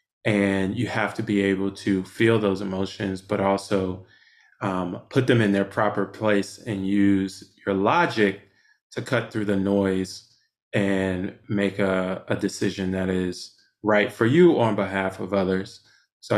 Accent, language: American, English